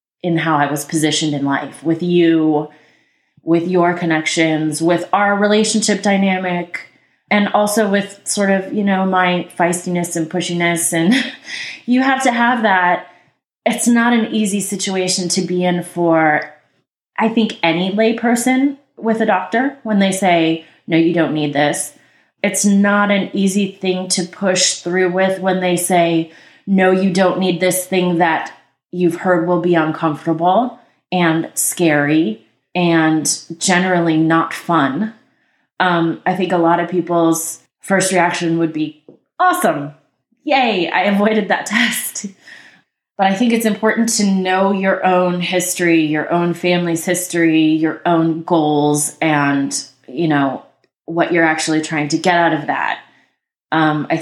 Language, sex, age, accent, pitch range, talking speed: English, female, 20-39, American, 160-195 Hz, 150 wpm